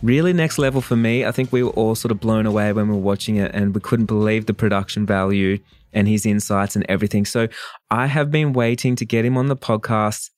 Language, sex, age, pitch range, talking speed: English, male, 20-39, 105-130 Hz, 245 wpm